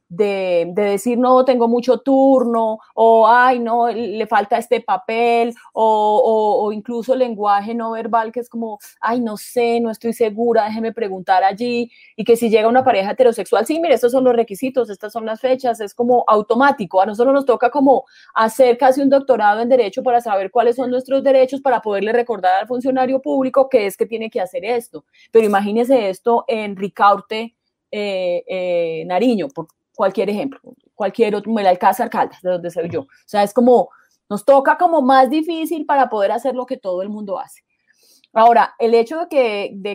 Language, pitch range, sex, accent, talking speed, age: Spanish, 210-255 Hz, female, Colombian, 190 wpm, 30-49